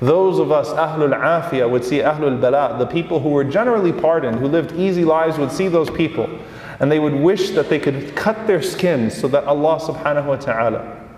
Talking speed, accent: 210 wpm, American